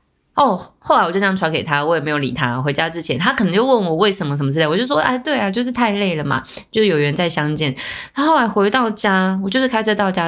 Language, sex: Chinese, female